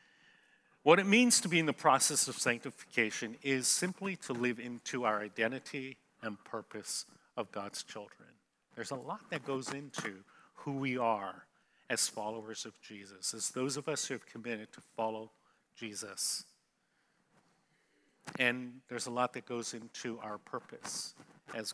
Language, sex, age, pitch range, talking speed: English, male, 50-69, 115-145 Hz, 150 wpm